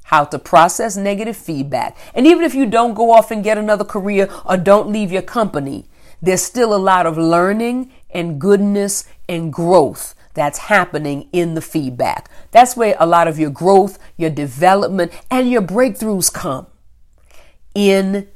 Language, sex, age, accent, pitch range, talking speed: English, female, 40-59, American, 160-205 Hz, 165 wpm